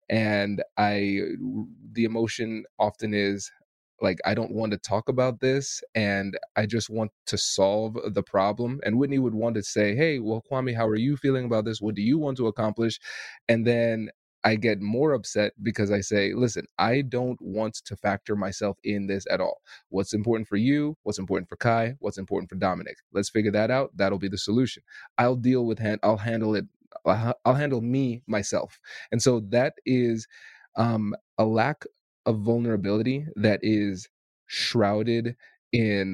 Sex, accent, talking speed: male, American, 175 wpm